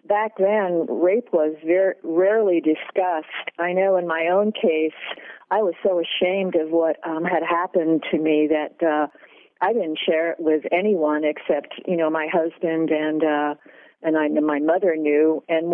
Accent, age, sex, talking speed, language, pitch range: American, 50-69, female, 170 wpm, English, 160-210 Hz